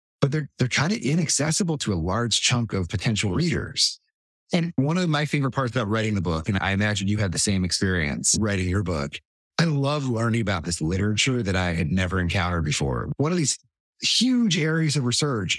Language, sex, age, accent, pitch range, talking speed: English, male, 30-49, American, 100-145 Hz, 205 wpm